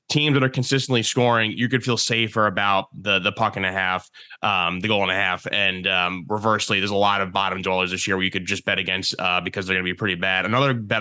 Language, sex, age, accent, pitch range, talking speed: English, male, 20-39, American, 100-120 Hz, 260 wpm